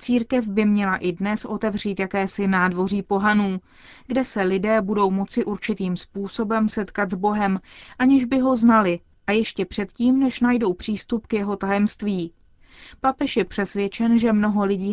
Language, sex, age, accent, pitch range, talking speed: Czech, female, 30-49, native, 195-240 Hz, 155 wpm